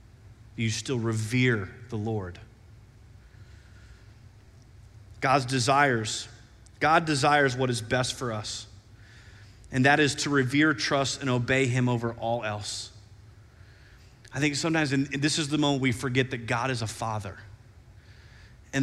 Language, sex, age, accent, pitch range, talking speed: English, male, 30-49, American, 105-145 Hz, 130 wpm